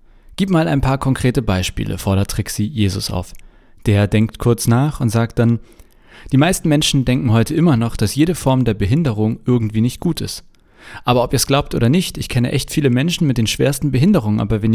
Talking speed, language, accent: 210 wpm, German, German